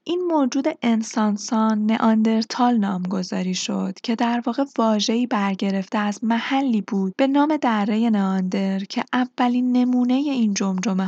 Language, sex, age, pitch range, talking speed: Persian, female, 10-29, 200-250 Hz, 130 wpm